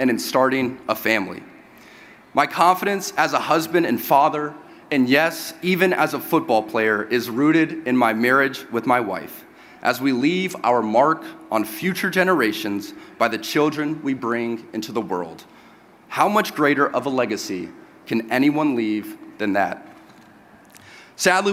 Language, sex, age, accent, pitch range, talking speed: English, male, 30-49, American, 140-190 Hz, 155 wpm